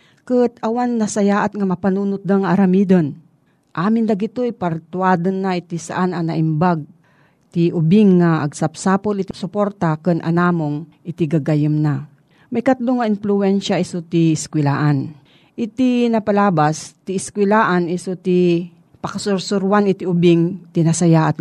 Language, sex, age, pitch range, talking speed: Filipino, female, 40-59, 160-200 Hz, 120 wpm